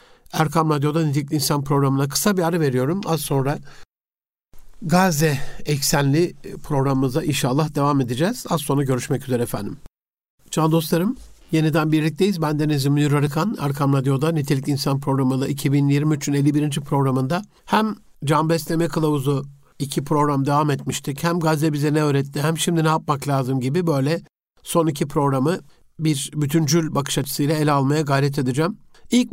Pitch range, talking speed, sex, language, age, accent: 140-165 Hz, 145 wpm, male, Turkish, 60-79, native